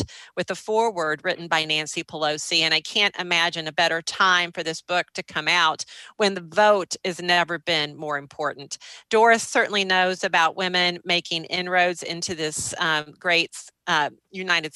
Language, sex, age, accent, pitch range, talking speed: English, female, 40-59, American, 165-205 Hz, 165 wpm